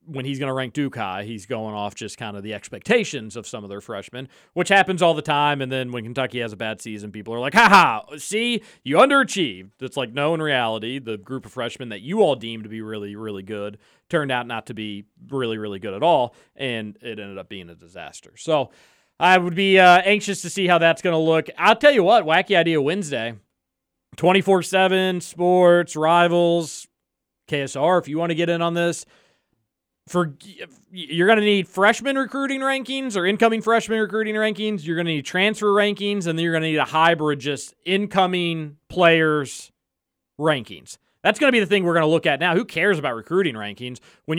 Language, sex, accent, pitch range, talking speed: English, male, American, 120-190 Hz, 210 wpm